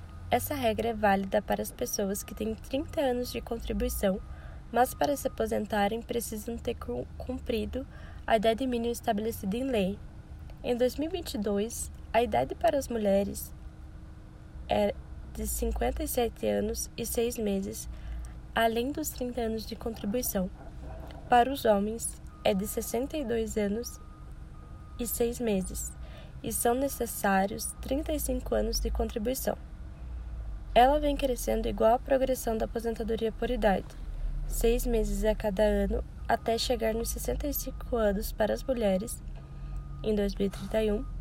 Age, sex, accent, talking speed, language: 10-29, female, Brazilian, 130 wpm, Portuguese